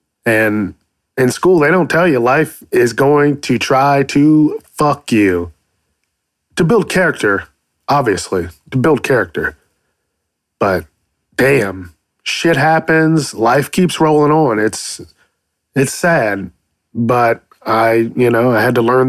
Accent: American